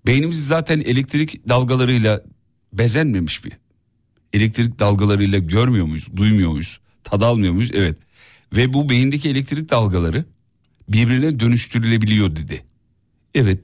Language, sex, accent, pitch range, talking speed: Turkish, male, native, 100-130 Hz, 110 wpm